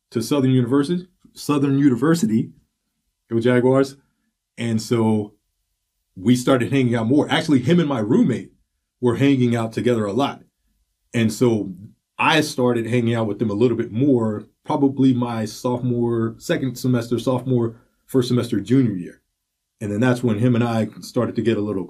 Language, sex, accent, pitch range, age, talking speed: English, male, American, 115-140 Hz, 30-49, 160 wpm